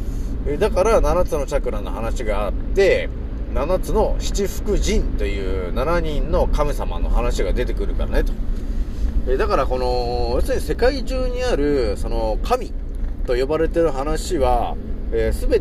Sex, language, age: male, Japanese, 30-49